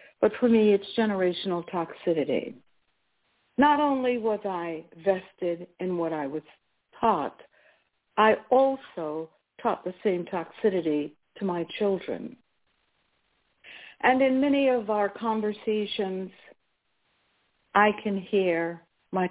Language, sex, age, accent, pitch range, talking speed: English, female, 60-79, American, 170-225 Hz, 110 wpm